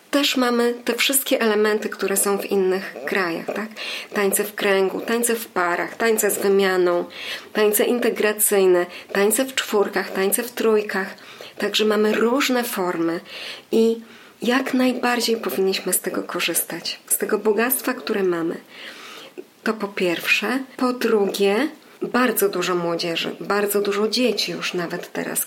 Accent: native